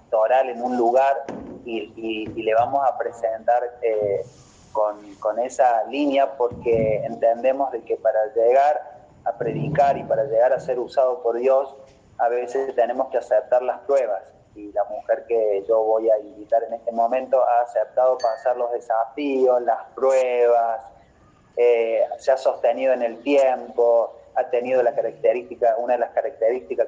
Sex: male